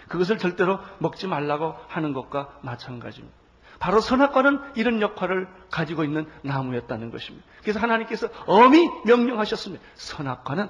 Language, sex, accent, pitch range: Korean, male, native, 155-225 Hz